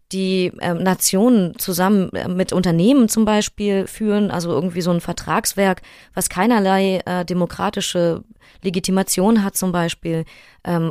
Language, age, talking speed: German, 20-39, 130 wpm